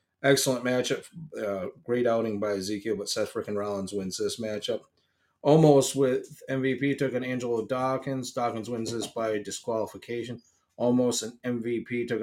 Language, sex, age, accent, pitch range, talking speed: English, male, 30-49, American, 110-130 Hz, 150 wpm